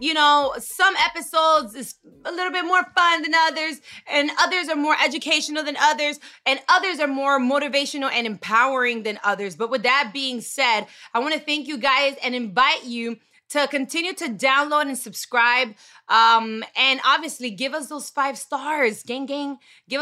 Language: English